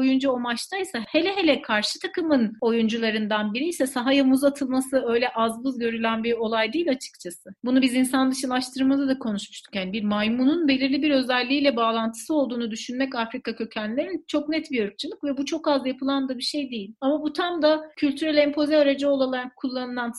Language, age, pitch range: Turkish, 40-59, 225-280 Hz